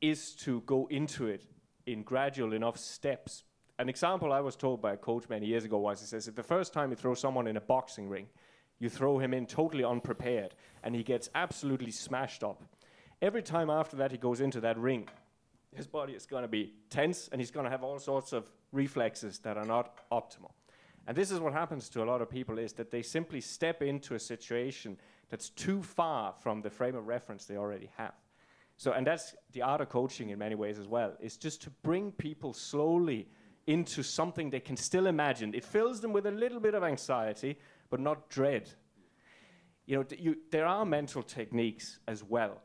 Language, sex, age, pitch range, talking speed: English, male, 30-49, 115-145 Hz, 210 wpm